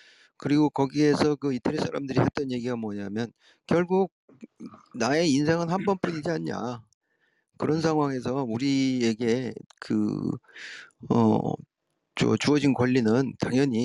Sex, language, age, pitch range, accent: male, Korean, 40-59, 115-155 Hz, native